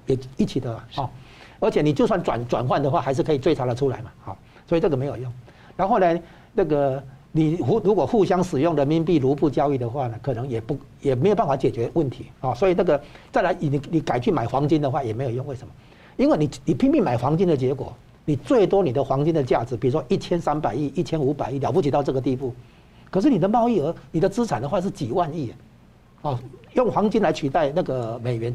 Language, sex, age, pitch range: Chinese, male, 60-79, 125-165 Hz